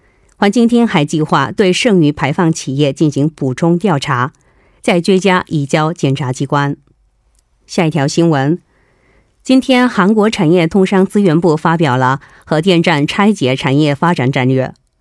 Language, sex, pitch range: Korean, female, 140-200 Hz